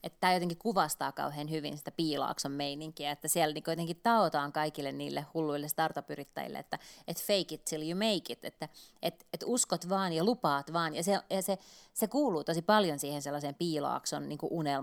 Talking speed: 175 wpm